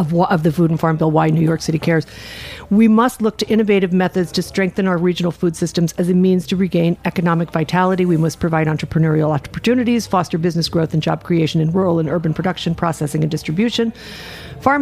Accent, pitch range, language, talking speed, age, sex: American, 160-190 Hz, English, 205 wpm, 50-69, female